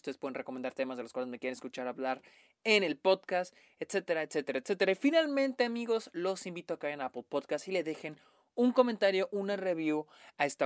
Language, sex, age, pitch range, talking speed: Spanish, male, 20-39, 145-220 Hz, 210 wpm